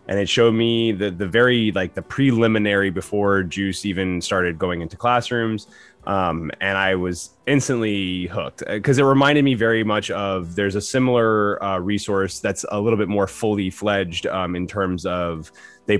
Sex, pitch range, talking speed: male, 90-115 Hz, 175 wpm